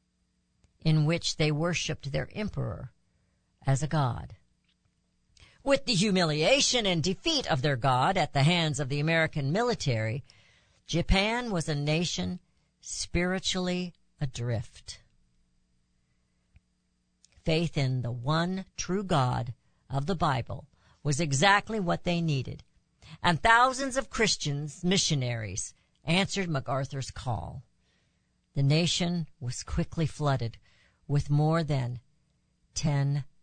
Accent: American